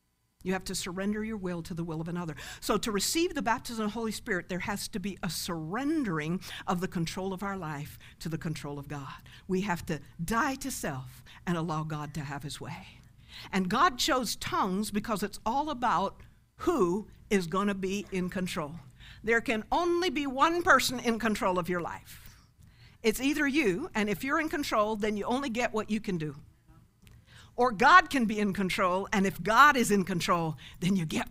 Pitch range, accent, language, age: 170-230 Hz, American, English, 60-79